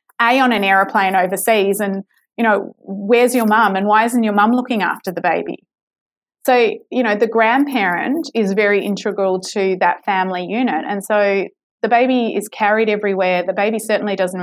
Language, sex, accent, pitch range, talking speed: English, female, Australian, 190-235 Hz, 180 wpm